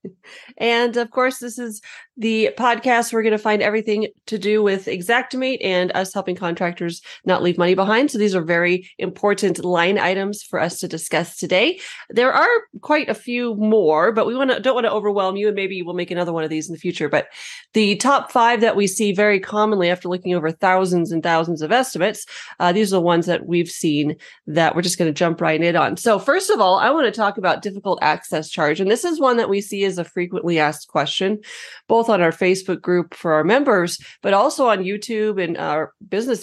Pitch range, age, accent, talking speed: 175-225 Hz, 30-49, American, 225 wpm